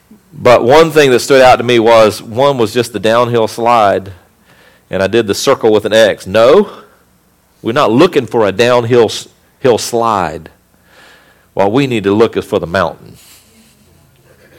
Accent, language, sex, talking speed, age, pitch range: American, English, male, 170 wpm, 50-69, 115-165 Hz